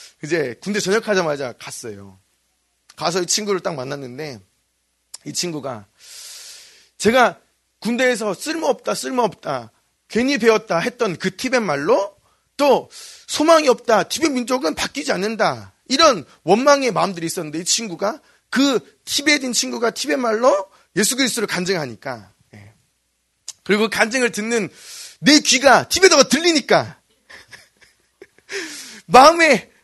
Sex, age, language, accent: male, 30-49, Korean, native